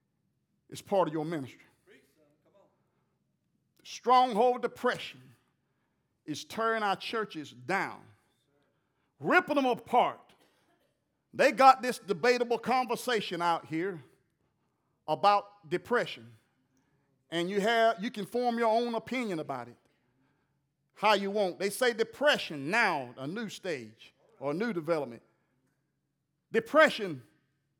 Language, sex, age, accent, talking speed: English, male, 50-69, American, 110 wpm